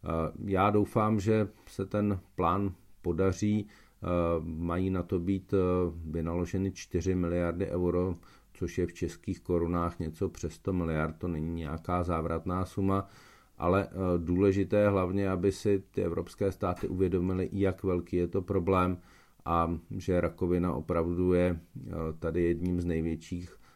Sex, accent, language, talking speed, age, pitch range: male, native, Czech, 135 wpm, 40-59, 85-95 Hz